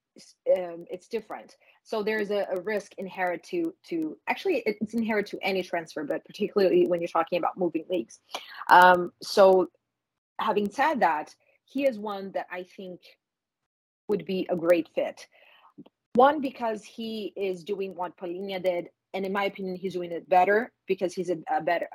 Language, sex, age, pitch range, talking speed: English, female, 30-49, 175-205 Hz, 170 wpm